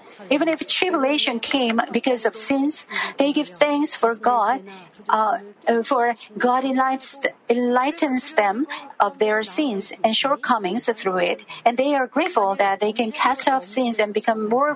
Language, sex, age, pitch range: Korean, female, 50-69, 220-280 Hz